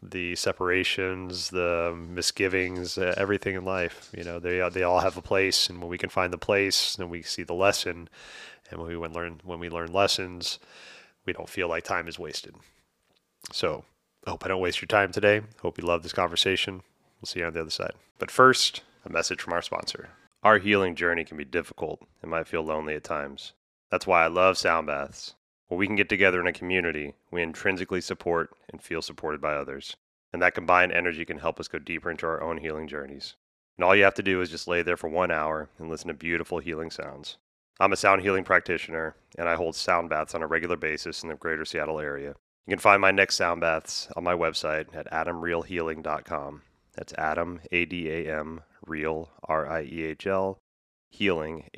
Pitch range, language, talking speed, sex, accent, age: 80-95 Hz, English, 205 wpm, male, American, 30-49